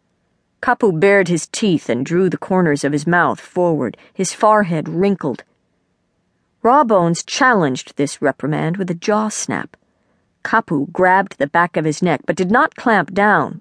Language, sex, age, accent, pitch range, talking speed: English, female, 50-69, American, 150-190 Hz, 155 wpm